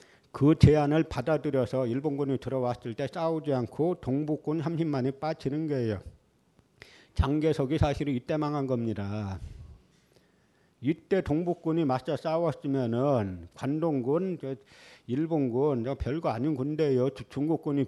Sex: male